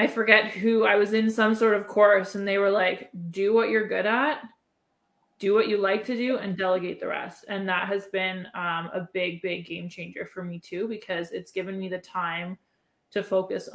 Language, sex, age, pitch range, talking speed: English, female, 20-39, 185-215 Hz, 220 wpm